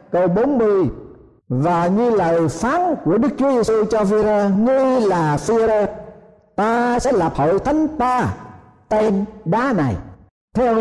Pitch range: 170-235 Hz